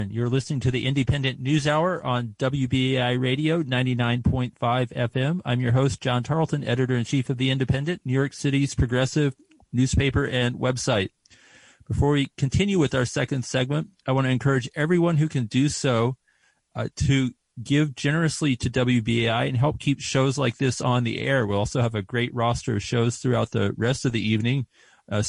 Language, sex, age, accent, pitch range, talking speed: English, male, 40-59, American, 115-135 Hz, 175 wpm